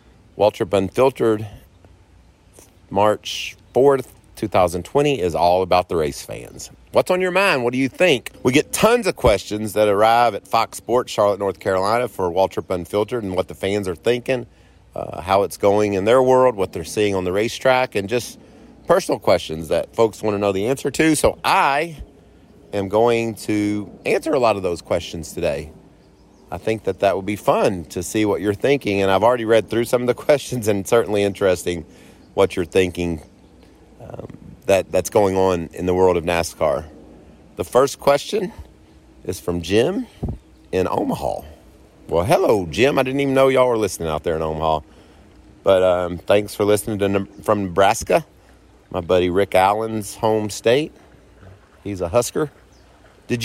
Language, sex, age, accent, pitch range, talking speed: English, male, 40-59, American, 95-120 Hz, 175 wpm